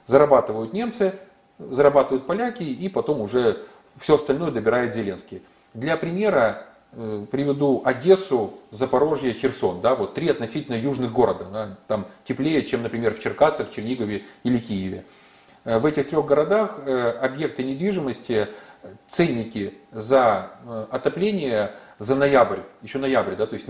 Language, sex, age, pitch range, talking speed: Russian, male, 30-49, 115-150 Hz, 115 wpm